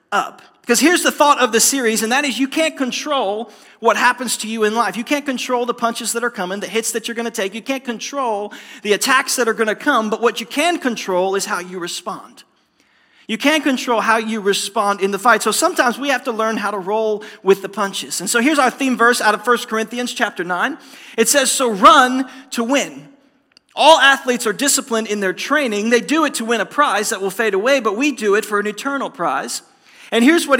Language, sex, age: English, male, 40-59